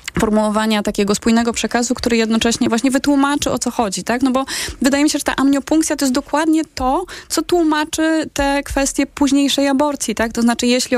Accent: native